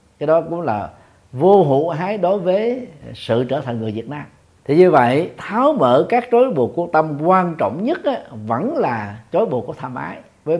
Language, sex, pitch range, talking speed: Vietnamese, male, 105-145 Hz, 210 wpm